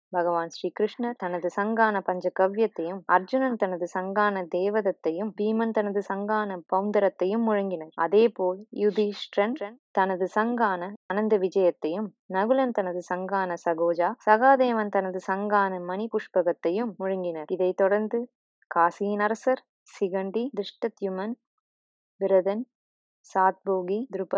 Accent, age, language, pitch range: Indian, 20-39, English, 180-210 Hz